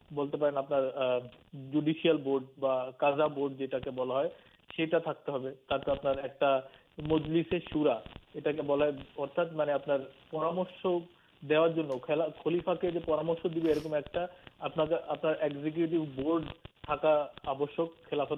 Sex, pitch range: male, 140-160 Hz